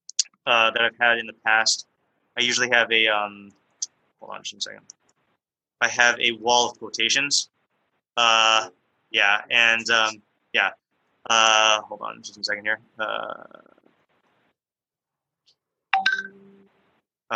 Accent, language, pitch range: American, English, 110-120 Hz